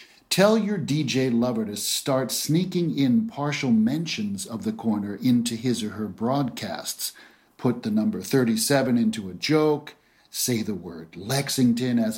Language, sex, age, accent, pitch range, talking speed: Dutch, male, 50-69, American, 120-160 Hz, 150 wpm